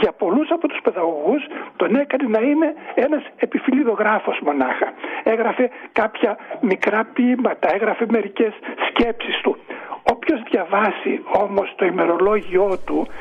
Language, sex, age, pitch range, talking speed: Greek, male, 60-79, 220-300 Hz, 120 wpm